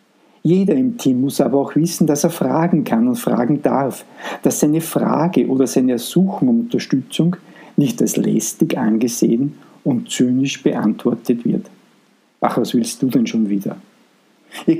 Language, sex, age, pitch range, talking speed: German, male, 50-69, 125-180 Hz, 155 wpm